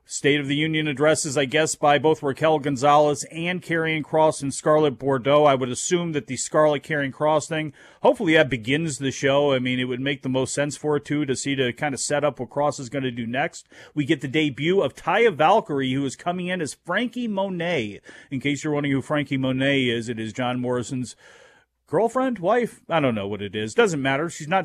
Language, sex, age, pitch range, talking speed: English, male, 40-59, 130-155 Hz, 230 wpm